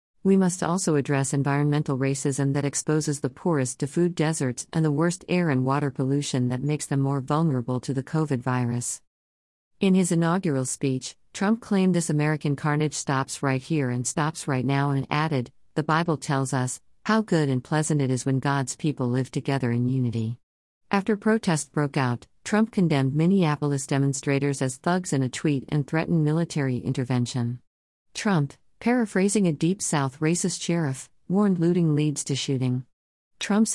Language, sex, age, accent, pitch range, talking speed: English, female, 50-69, American, 130-160 Hz, 165 wpm